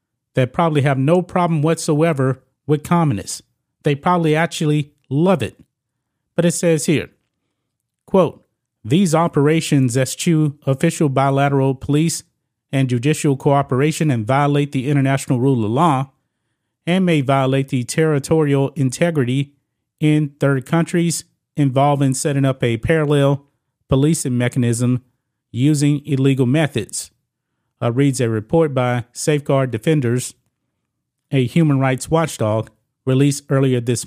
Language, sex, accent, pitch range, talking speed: English, male, American, 130-155 Hz, 120 wpm